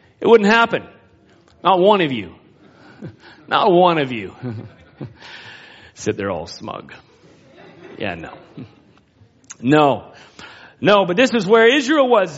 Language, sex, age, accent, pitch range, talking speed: English, male, 40-59, American, 165-255 Hz, 120 wpm